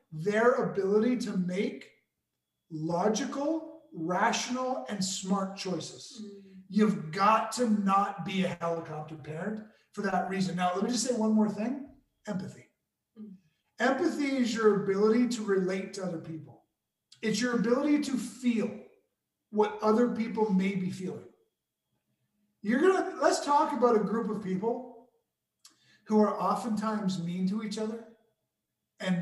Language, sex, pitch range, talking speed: English, male, 190-230 Hz, 135 wpm